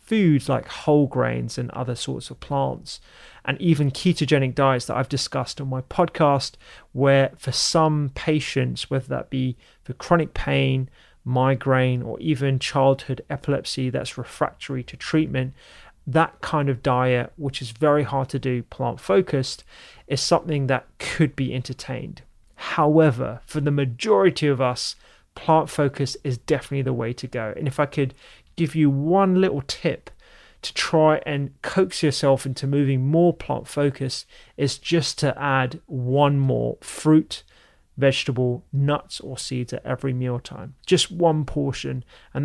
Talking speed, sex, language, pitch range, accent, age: 150 wpm, male, English, 130-150 Hz, British, 30-49